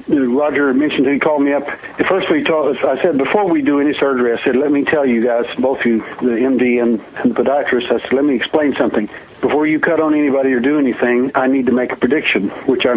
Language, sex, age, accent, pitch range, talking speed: English, male, 60-79, American, 125-145 Hz, 245 wpm